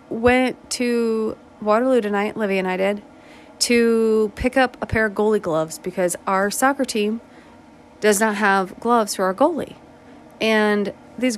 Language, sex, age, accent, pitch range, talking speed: English, female, 30-49, American, 200-260 Hz, 155 wpm